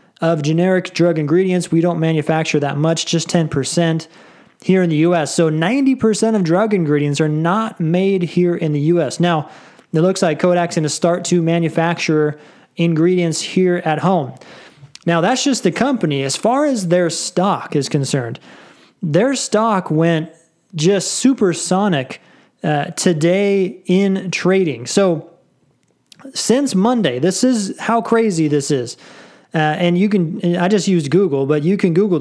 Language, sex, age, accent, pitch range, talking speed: English, male, 20-39, American, 160-215 Hz, 155 wpm